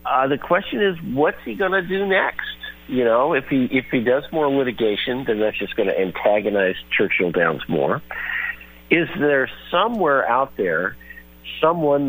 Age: 50-69